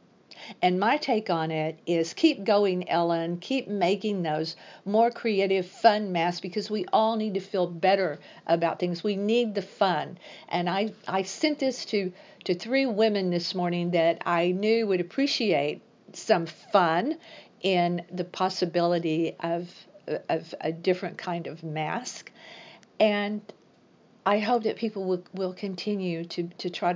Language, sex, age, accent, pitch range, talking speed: English, female, 50-69, American, 175-220 Hz, 150 wpm